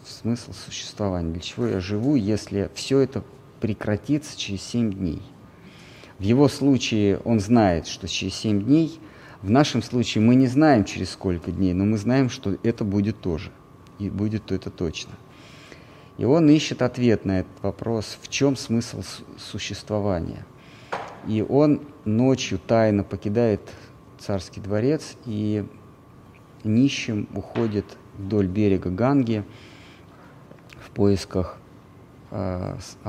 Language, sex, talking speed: Russian, male, 125 wpm